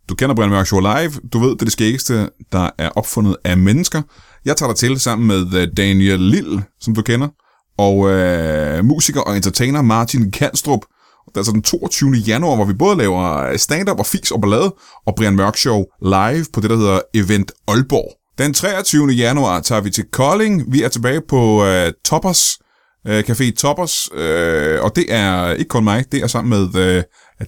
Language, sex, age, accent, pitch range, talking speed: Danish, male, 30-49, native, 95-130 Hz, 190 wpm